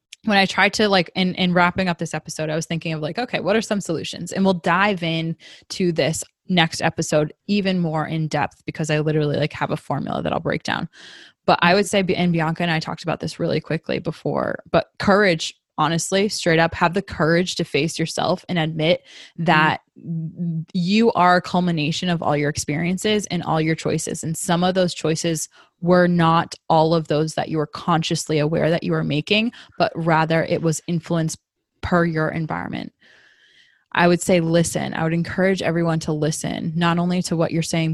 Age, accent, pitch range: 20-39, American, 160-180 Hz